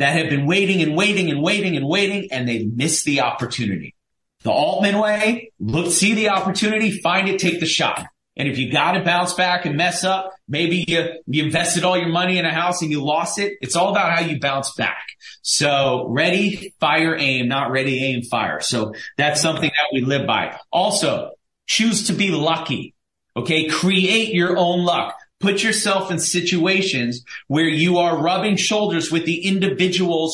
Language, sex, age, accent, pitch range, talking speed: English, male, 30-49, American, 150-185 Hz, 190 wpm